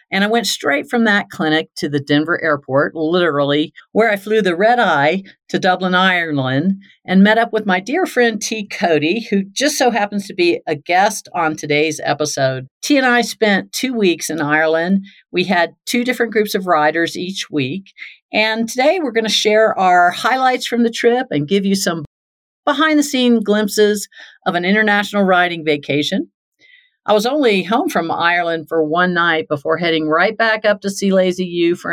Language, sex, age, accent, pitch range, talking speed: English, female, 50-69, American, 160-220 Hz, 190 wpm